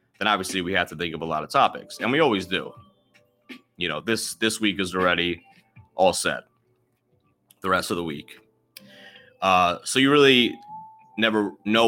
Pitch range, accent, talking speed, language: 95-125 Hz, American, 175 wpm, English